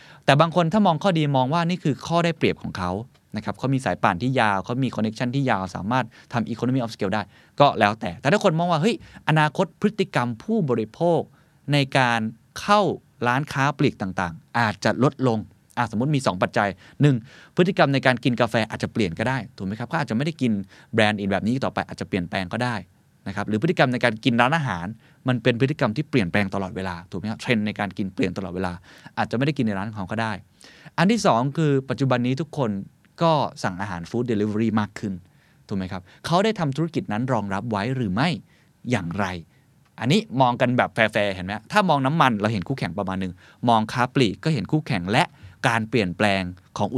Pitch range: 100-140 Hz